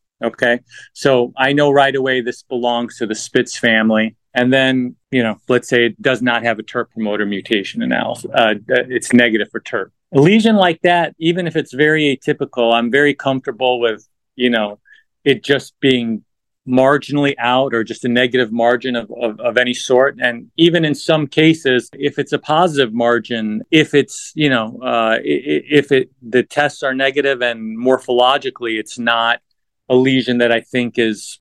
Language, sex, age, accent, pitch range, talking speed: English, male, 40-59, American, 115-140 Hz, 180 wpm